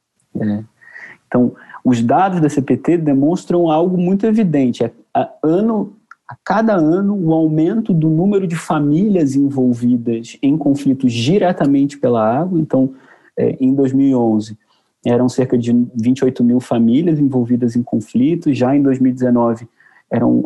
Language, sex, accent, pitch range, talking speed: Portuguese, male, Brazilian, 125-170 Hz, 120 wpm